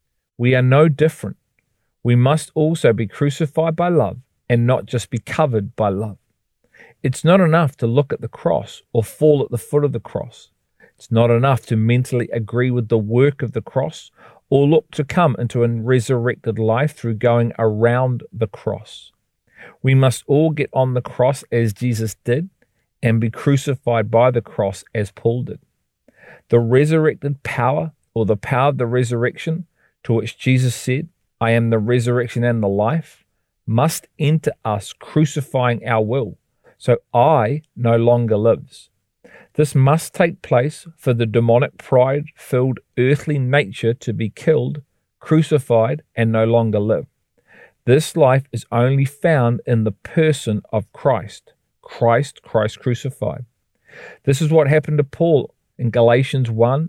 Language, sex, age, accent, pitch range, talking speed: English, male, 40-59, Australian, 115-145 Hz, 155 wpm